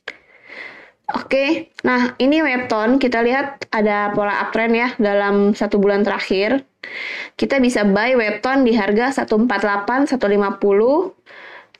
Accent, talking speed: native, 115 wpm